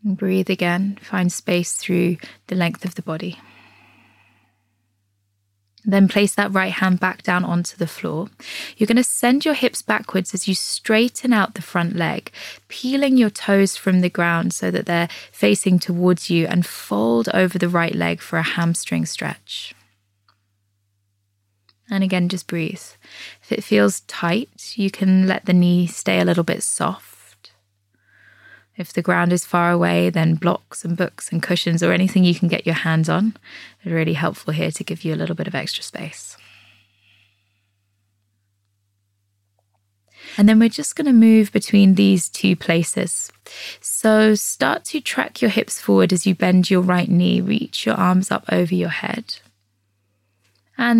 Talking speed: 165 wpm